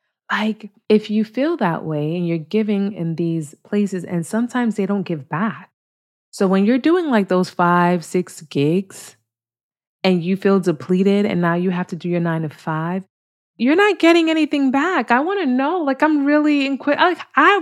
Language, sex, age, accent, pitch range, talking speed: English, female, 30-49, American, 155-215 Hz, 190 wpm